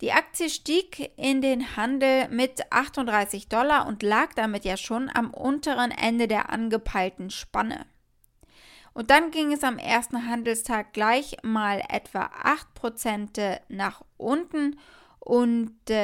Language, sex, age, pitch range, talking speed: German, female, 10-29, 215-265 Hz, 125 wpm